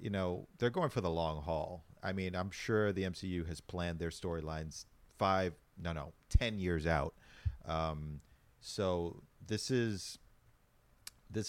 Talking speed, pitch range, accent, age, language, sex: 150 wpm, 80-100 Hz, American, 40-59, English, male